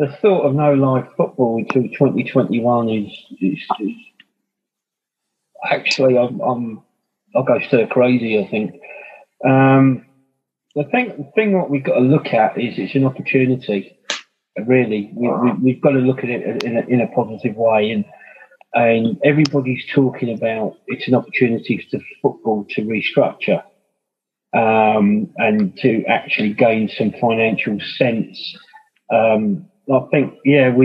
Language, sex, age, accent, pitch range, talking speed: English, male, 30-49, British, 115-145 Hz, 145 wpm